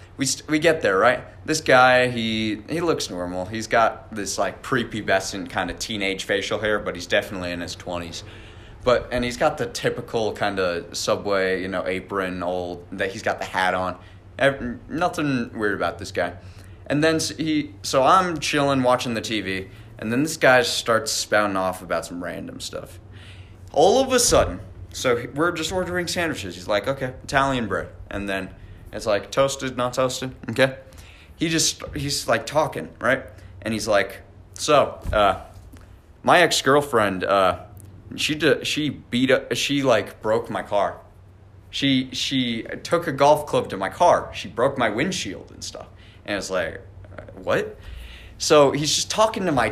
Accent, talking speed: American, 175 wpm